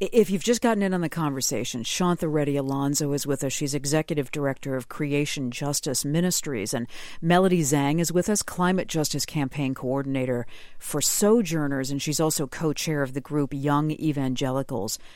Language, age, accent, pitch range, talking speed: English, 50-69, American, 140-180 Hz, 165 wpm